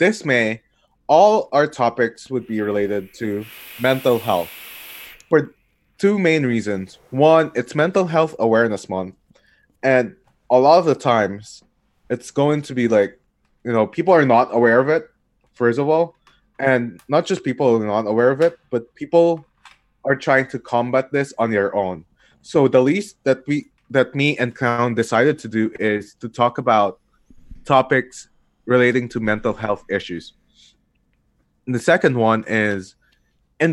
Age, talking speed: 20-39, 160 wpm